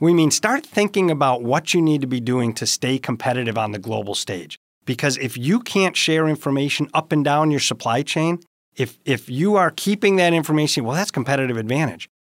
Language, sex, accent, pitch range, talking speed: English, male, American, 120-165 Hz, 200 wpm